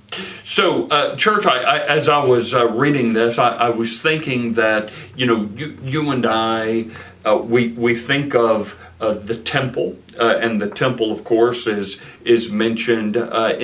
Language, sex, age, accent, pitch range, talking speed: English, male, 50-69, American, 110-125 Hz, 175 wpm